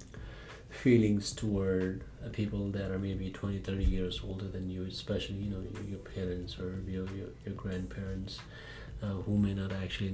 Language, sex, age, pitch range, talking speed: English, male, 30-49, 95-110 Hz, 180 wpm